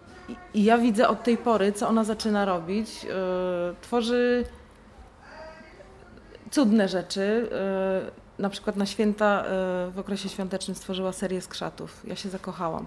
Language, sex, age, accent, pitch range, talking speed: Polish, female, 20-39, native, 175-220 Hz, 120 wpm